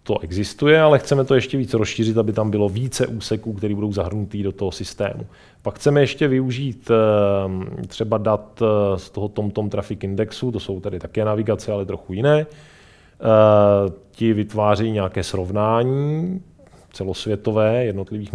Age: 20-39